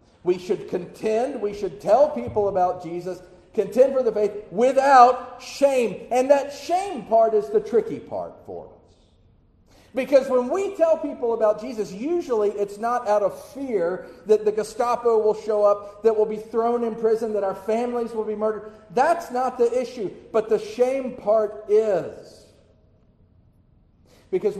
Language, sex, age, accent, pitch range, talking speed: English, male, 50-69, American, 145-235 Hz, 160 wpm